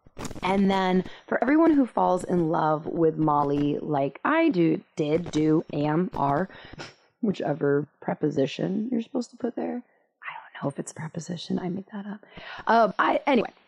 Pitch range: 160-220 Hz